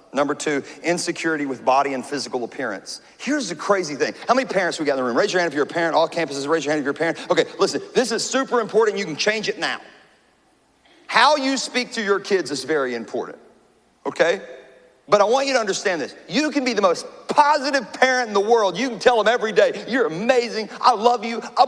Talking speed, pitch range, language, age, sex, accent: 240 wpm, 165-255 Hz, English, 40-59, male, American